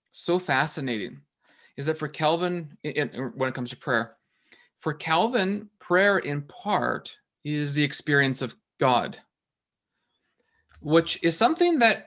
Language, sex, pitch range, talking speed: English, male, 130-170 Hz, 125 wpm